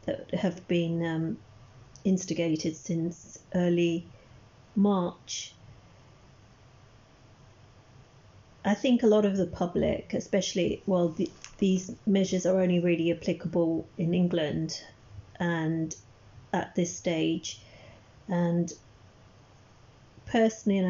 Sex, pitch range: female, 125-185 Hz